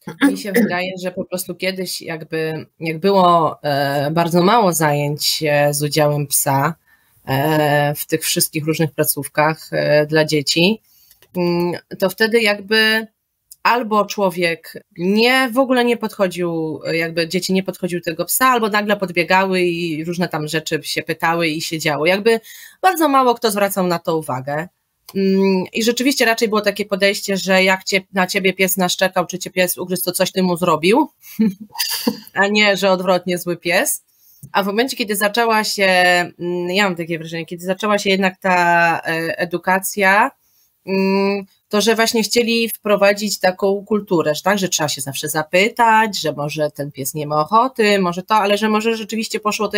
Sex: female